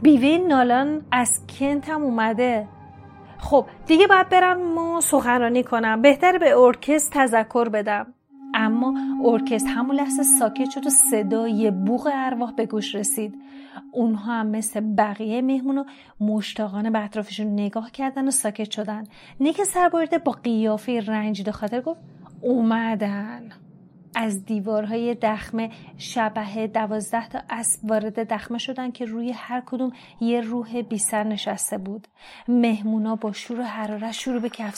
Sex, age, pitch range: female, 30-49, 215-270 Hz